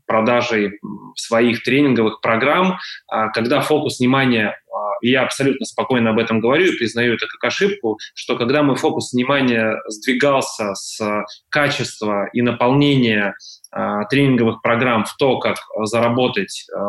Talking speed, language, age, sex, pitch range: 120 wpm, Russian, 20-39, male, 115-140 Hz